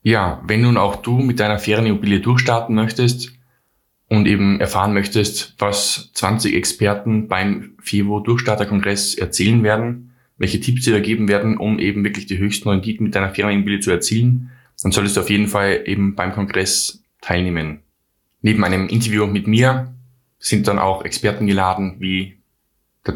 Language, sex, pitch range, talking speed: German, male, 95-110 Hz, 155 wpm